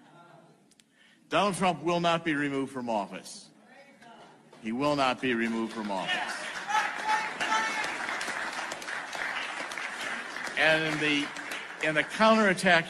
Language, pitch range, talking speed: Swedish, 120-170 Hz, 100 wpm